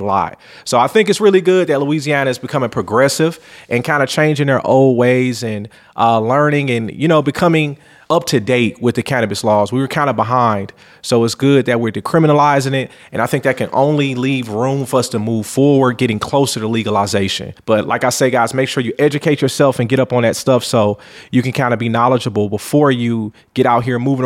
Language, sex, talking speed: English, male, 225 wpm